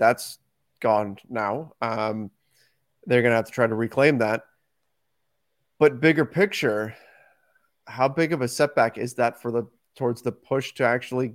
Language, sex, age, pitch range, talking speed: English, male, 30-49, 120-145 Hz, 160 wpm